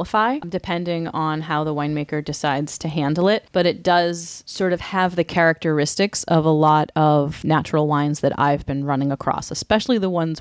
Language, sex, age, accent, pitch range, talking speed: English, female, 30-49, American, 150-175 Hz, 180 wpm